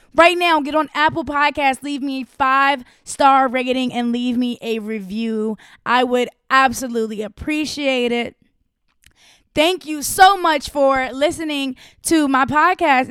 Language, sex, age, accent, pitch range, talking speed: English, female, 20-39, American, 230-290 Hz, 135 wpm